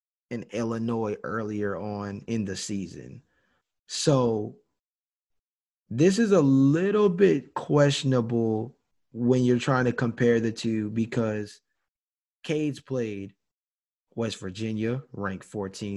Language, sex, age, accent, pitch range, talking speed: English, male, 20-39, American, 105-135 Hz, 100 wpm